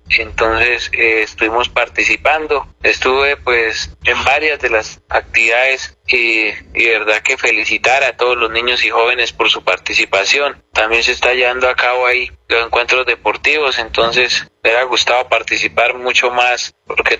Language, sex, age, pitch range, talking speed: Spanish, male, 30-49, 115-130 Hz, 150 wpm